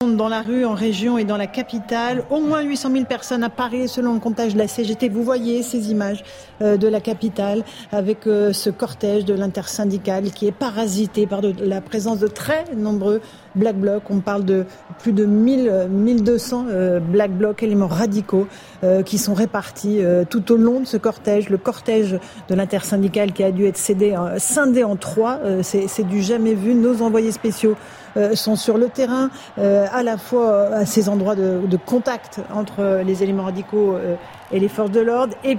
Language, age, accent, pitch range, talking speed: French, 50-69, French, 200-230 Hz, 180 wpm